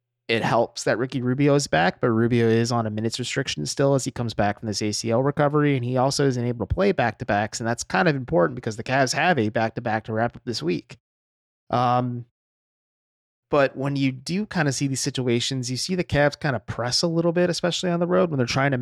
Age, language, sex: 30-49, English, male